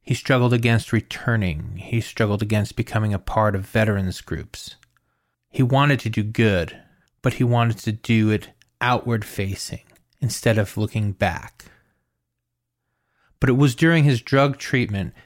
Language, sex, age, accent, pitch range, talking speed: English, male, 30-49, American, 105-125 Hz, 140 wpm